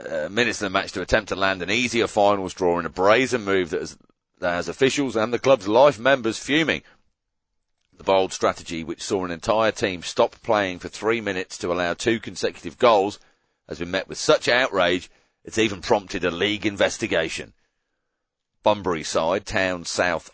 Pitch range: 90-120 Hz